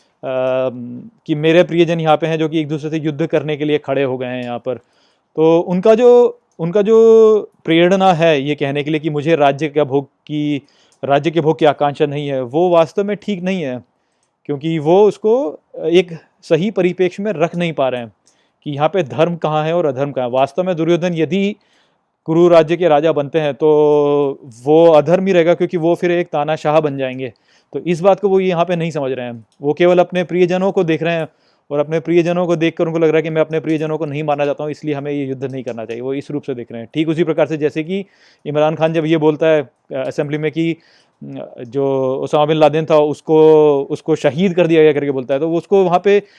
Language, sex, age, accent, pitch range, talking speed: Hindi, male, 30-49, native, 145-175 Hz, 230 wpm